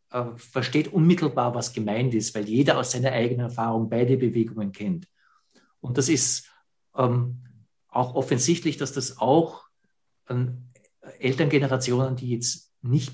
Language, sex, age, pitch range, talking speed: English, male, 60-79, 125-155 Hz, 130 wpm